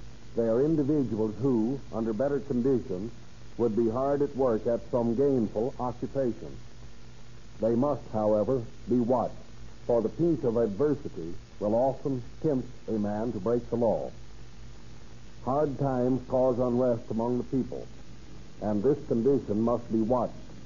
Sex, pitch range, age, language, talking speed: male, 115-135 Hz, 60-79, English, 140 wpm